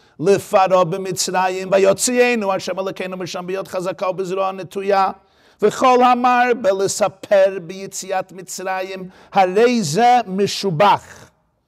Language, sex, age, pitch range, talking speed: Hebrew, male, 50-69, 150-205 Hz, 90 wpm